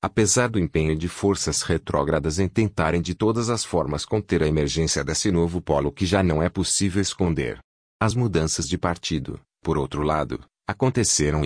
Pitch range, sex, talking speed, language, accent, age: 80-100 Hz, male, 170 wpm, Portuguese, Brazilian, 40-59